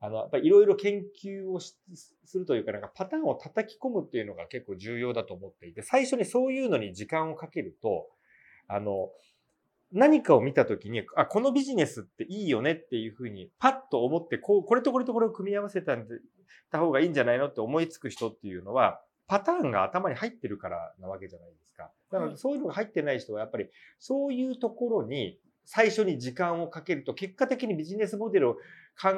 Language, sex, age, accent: Japanese, male, 40-59, native